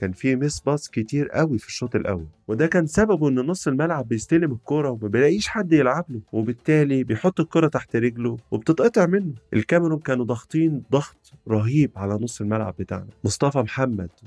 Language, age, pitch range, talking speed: Arabic, 30-49, 110-145 Hz, 165 wpm